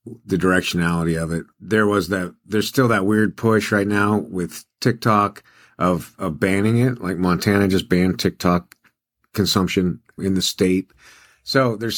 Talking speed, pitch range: 155 wpm, 100-125 Hz